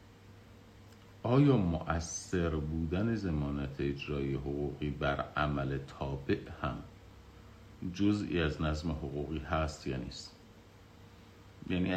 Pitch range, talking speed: 75-95 Hz, 90 wpm